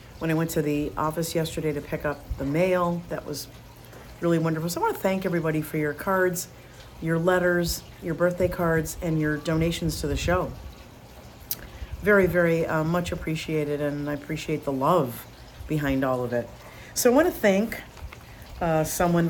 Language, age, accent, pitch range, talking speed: English, 50-69, American, 150-185 Hz, 175 wpm